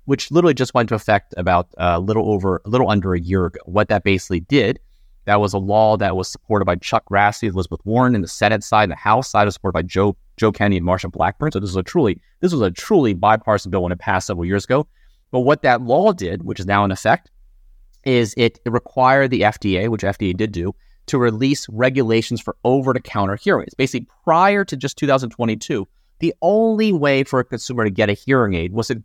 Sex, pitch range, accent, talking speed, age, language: male, 100-125 Hz, American, 230 wpm, 30-49, English